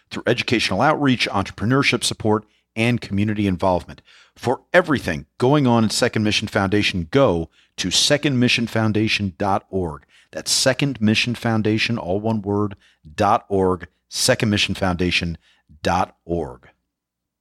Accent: American